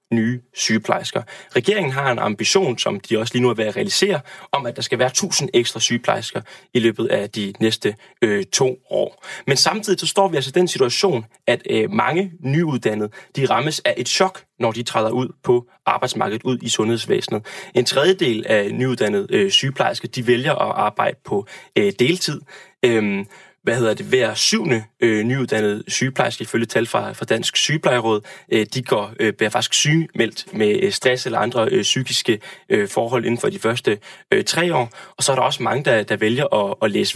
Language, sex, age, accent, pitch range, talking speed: Danish, male, 20-39, native, 120-190 Hz, 185 wpm